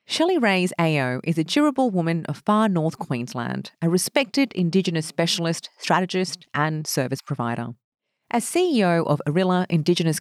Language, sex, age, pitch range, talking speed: English, female, 40-59, 155-230 Hz, 140 wpm